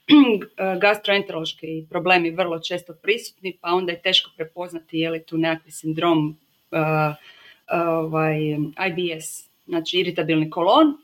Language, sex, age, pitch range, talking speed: Croatian, female, 30-49, 170-215 Hz, 120 wpm